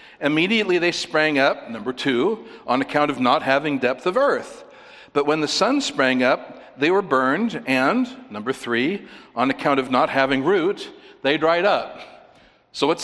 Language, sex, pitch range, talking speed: English, male, 150-230 Hz, 170 wpm